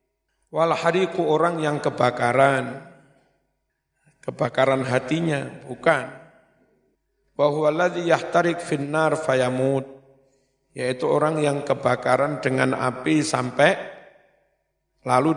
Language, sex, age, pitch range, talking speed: Indonesian, male, 50-69, 130-155 Hz, 75 wpm